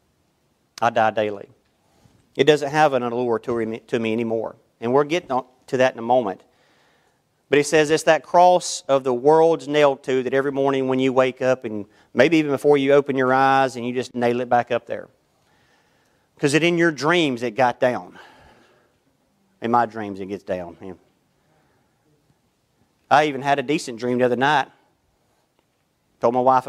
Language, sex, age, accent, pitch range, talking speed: English, male, 40-59, American, 120-155 Hz, 175 wpm